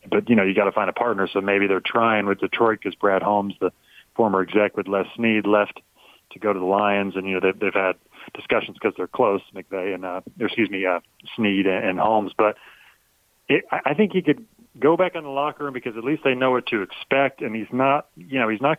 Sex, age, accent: male, 40-59, American